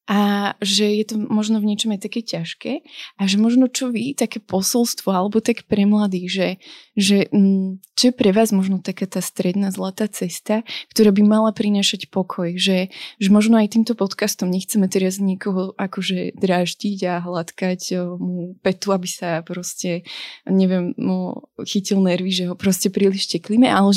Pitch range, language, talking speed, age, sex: 185-215 Hz, Slovak, 165 wpm, 20-39, female